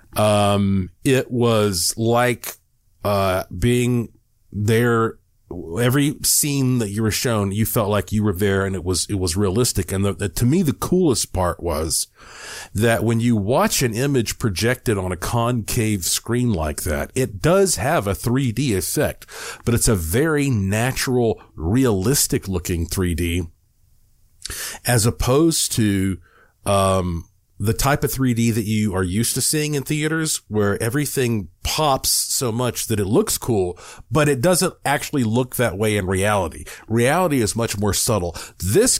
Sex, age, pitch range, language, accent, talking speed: male, 40-59, 95-125 Hz, English, American, 155 wpm